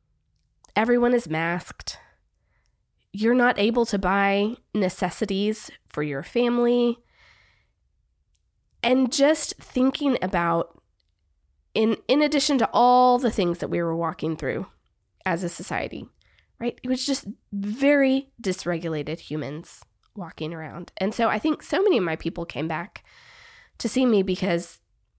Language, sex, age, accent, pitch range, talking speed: English, female, 20-39, American, 170-250 Hz, 130 wpm